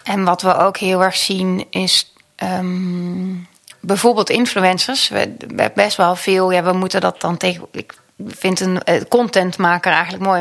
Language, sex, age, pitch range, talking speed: Dutch, female, 30-49, 180-205 Hz, 175 wpm